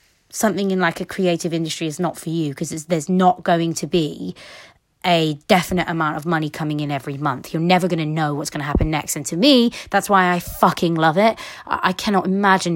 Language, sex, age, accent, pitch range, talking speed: English, female, 20-39, British, 155-190 Hz, 225 wpm